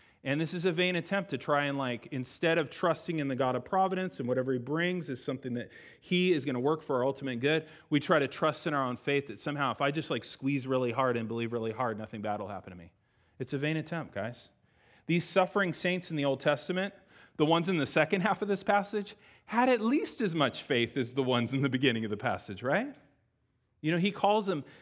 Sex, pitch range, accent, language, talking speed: male, 120-170 Hz, American, English, 250 wpm